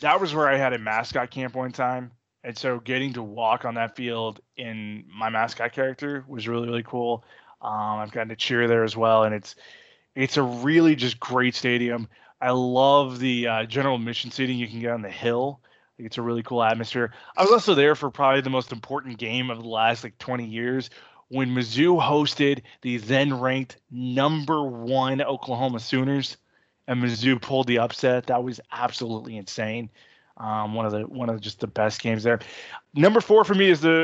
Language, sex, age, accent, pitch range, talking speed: English, male, 20-39, American, 115-140 Hz, 200 wpm